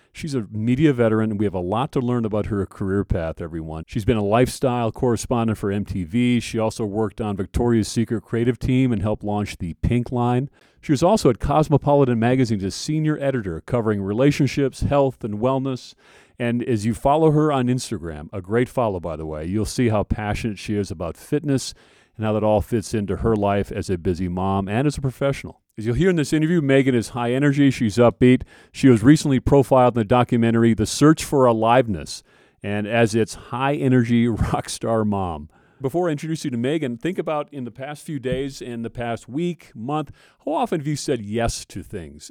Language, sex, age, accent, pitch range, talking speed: English, male, 40-59, American, 105-135 Hz, 205 wpm